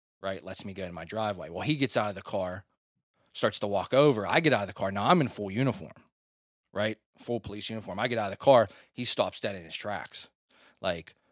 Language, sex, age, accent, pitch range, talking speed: English, male, 20-39, American, 95-120 Hz, 245 wpm